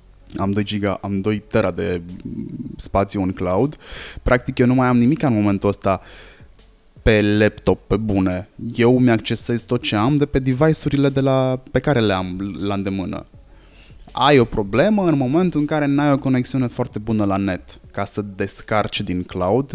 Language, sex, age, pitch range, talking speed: Romanian, male, 20-39, 100-125 Hz, 165 wpm